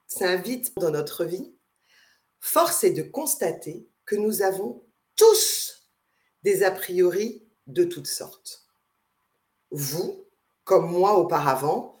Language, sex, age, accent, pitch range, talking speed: French, female, 50-69, French, 185-265 Hz, 110 wpm